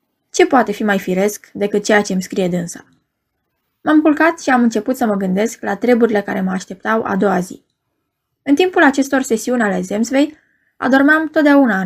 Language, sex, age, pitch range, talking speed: Romanian, female, 20-39, 210-295 Hz, 180 wpm